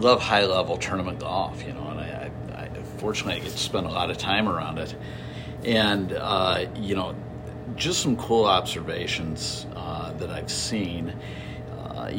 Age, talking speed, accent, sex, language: 50-69, 165 wpm, American, male, English